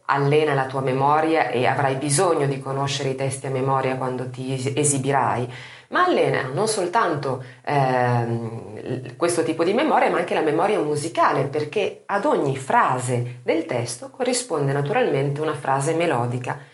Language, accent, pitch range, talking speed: Italian, native, 135-210 Hz, 145 wpm